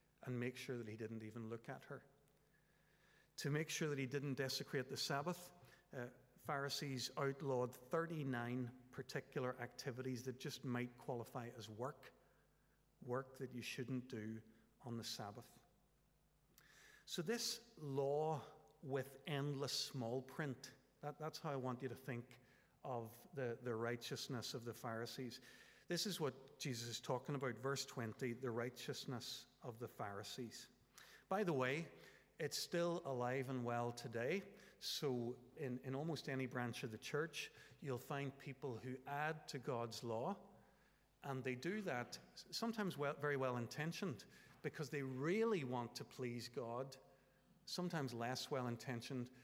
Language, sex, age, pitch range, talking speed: English, male, 50-69, 120-145 Hz, 140 wpm